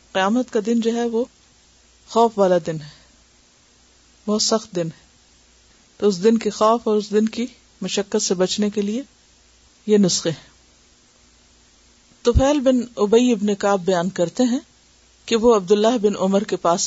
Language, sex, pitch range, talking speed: Urdu, female, 165-230 Hz, 165 wpm